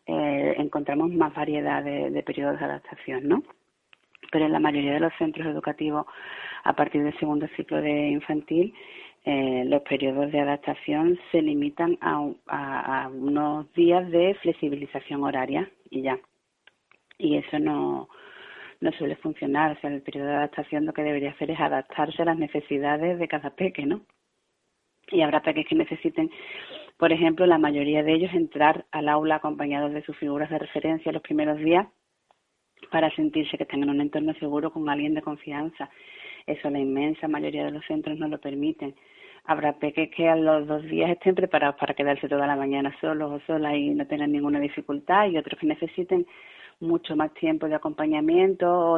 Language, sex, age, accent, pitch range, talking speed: Spanish, female, 30-49, Spanish, 145-165 Hz, 180 wpm